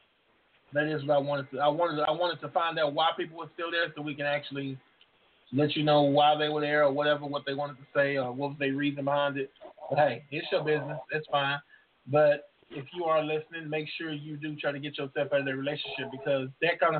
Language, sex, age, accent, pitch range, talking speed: English, male, 20-39, American, 140-160 Hz, 245 wpm